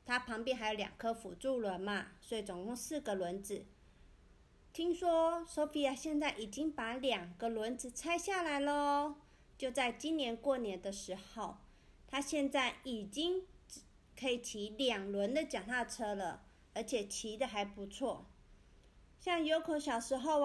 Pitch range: 210-290 Hz